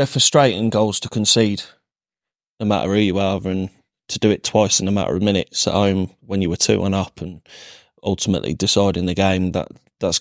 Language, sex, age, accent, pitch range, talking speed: English, male, 20-39, British, 95-110 Hz, 205 wpm